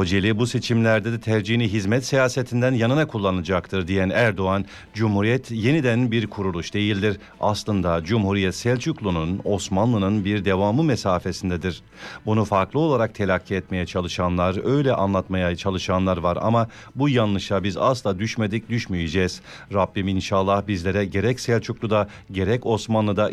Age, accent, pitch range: 50-69, Turkish, 95-115 Hz